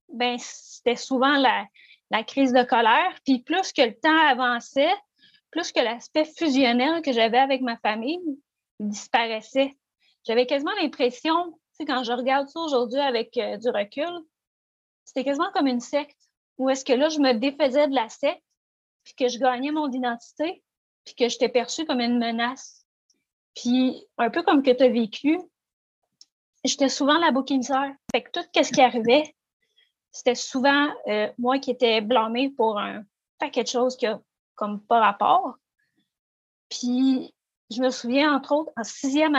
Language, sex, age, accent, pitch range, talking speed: French, female, 30-49, Canadian, 245-295 Hz, 160 wpm